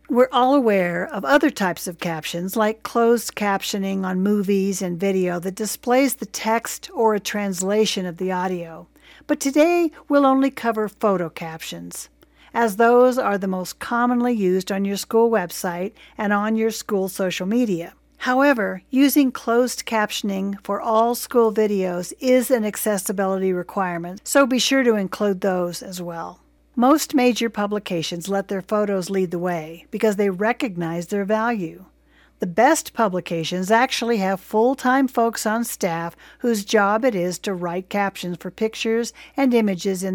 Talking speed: 155 wpm